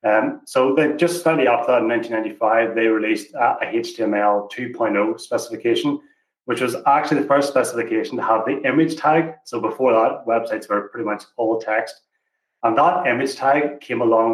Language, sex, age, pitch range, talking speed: English, male, 30-49, 110-155 Hz, 175 wpm